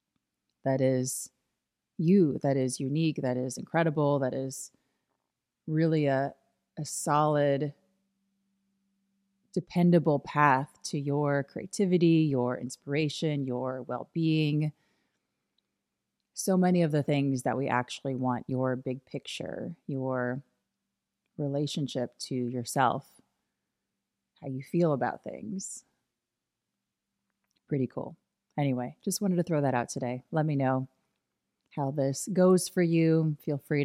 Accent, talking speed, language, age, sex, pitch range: American, 115 wpm, English, 30-49, female, 130-160 Hz